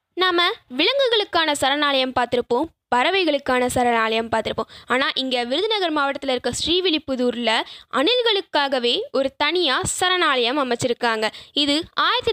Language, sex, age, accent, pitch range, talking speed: Tamil, female, 20-39, native, 255-370 Hz, 95 wpm